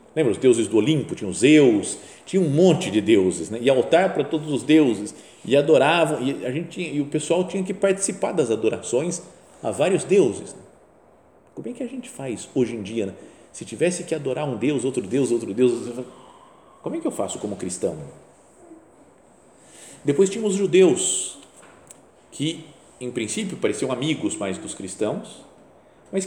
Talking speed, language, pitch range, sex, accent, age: 180 wpm, Portuguese, 130-200 Hz, male, Brazilian, 50-69